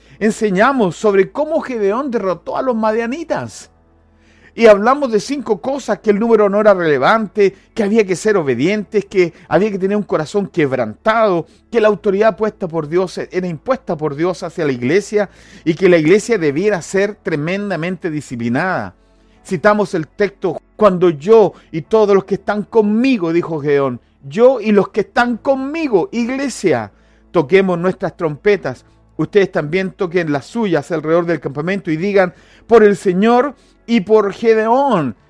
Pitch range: 175-235 Hz